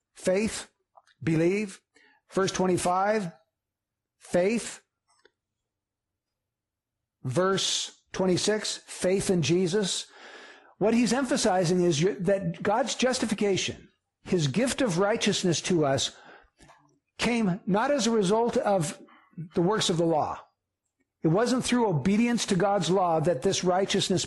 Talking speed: 110 wpm